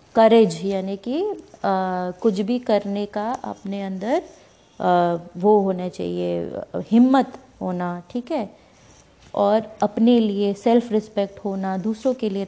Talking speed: 125 wpm